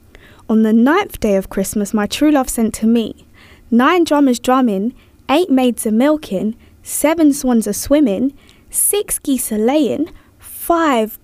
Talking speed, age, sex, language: 150 wpm, 10-29, female, English